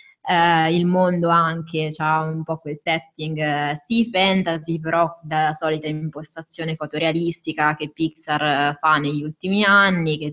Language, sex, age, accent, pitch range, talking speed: Italian, female, 20-39, native, 150-170 Hz, 130 wpm